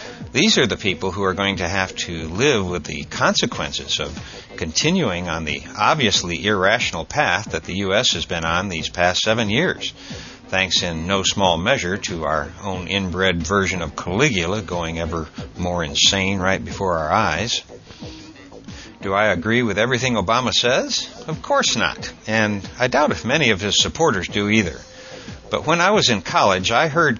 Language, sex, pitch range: English, male, 85-110 Hz